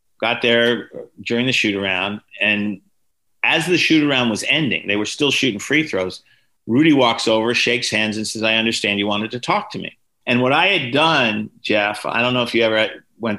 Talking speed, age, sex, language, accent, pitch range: 210 wpm, 50-69, male, English, American, 105-125 Hz